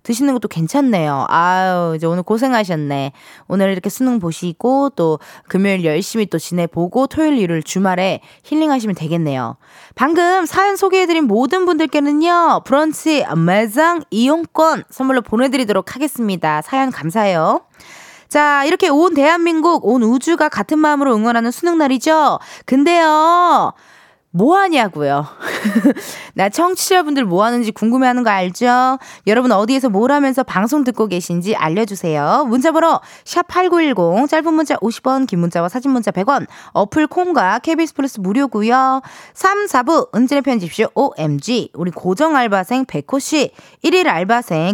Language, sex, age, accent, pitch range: Korean, female, 20-39, native, 195-310 Hz